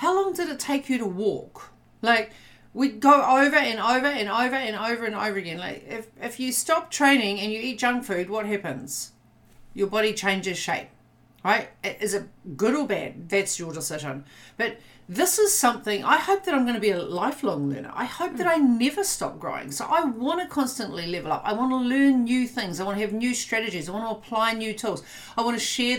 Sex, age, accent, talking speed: female, 40-59, Australian, 210 wpm